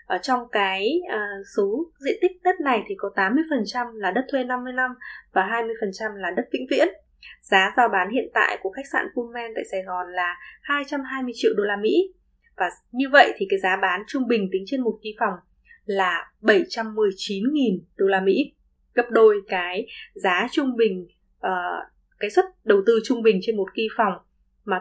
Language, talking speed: Vietnamese, 185 wpm